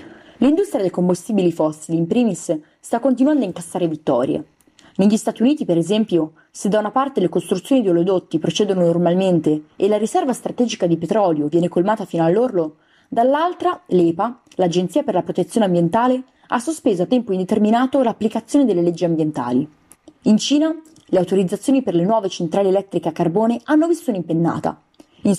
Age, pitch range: 20-39, 170-245 Hz